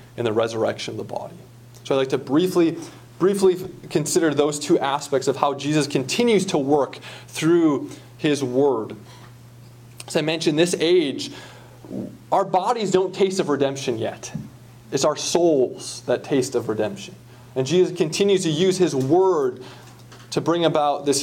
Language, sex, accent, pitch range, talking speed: English, male, American, 125-180 Hz, 155 wpm